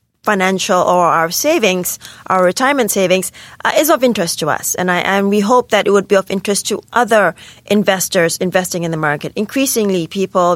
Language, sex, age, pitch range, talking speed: English, female, 30-49, 175-205 Hz, 190 wpm